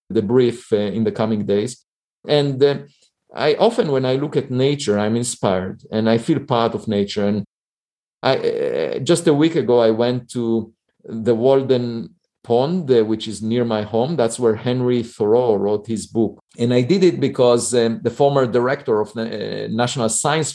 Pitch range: 110-140 Hz